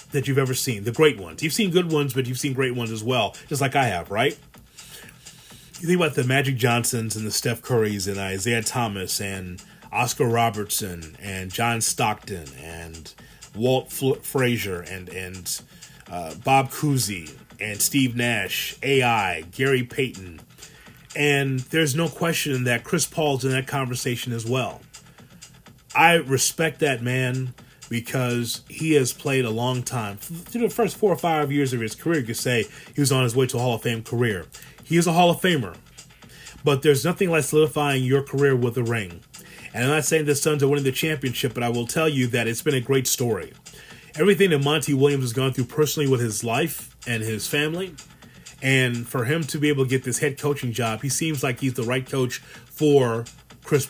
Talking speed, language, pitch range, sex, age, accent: 195 wpm, English, 120-145 Hz, male, 30-49, American